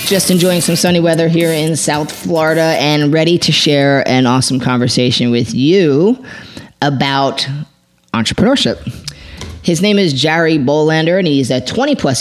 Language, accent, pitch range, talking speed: English, American, 125-165 Hz, 145 wpm